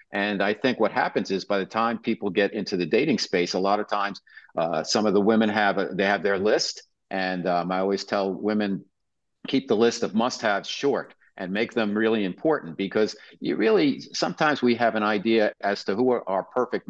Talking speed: 215 wpm